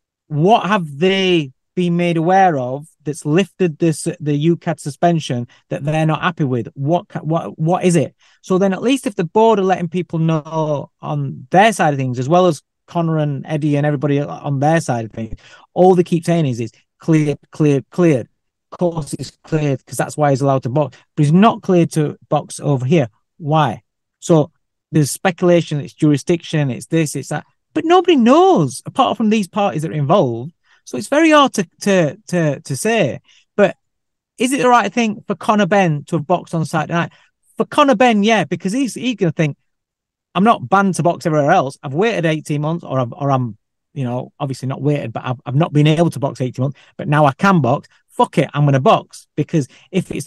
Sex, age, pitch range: male, 30-49, 145-185 Hz